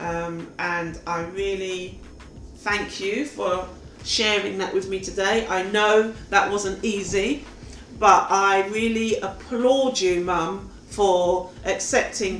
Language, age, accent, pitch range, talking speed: English, 40-59, British, 170-200 Hz, 120 wpm